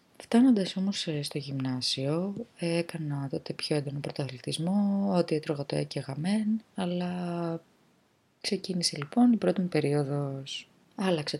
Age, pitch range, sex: 20-39, 150-200 Hz, female